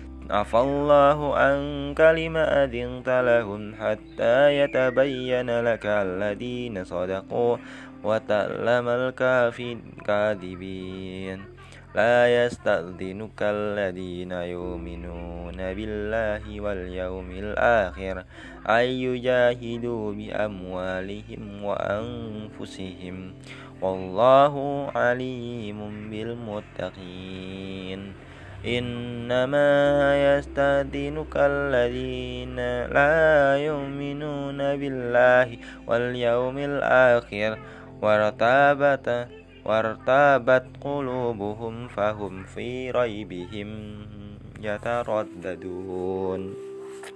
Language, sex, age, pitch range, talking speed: Indonesian, male, 20-39, 95-125 Hz, 50 wpm